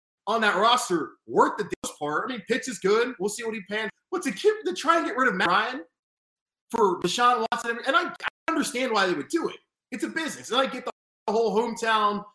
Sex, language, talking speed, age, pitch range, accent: male, English, 240 wpm, 30-49, 185-235 Hz, American